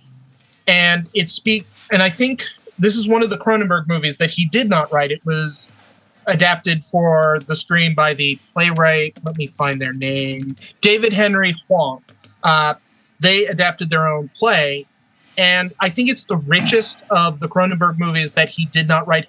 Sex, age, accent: male, 30-49, American